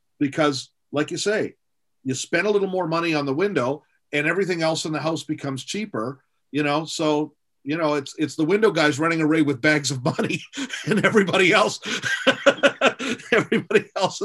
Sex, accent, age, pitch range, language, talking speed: male, American, 40-59, 115-150 Hz, English, 175 wpm